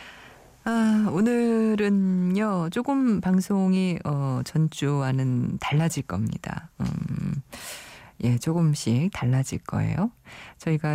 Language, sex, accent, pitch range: Korean, female, native, 130-185 Hz